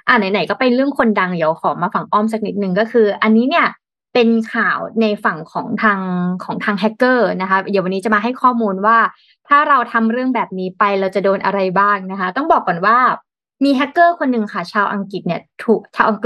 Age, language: 20-39, Thai